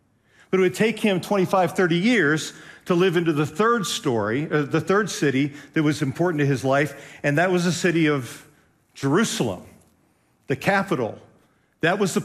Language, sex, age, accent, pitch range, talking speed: English, male, 50-69, American, 140-185 Hz, 175 wpm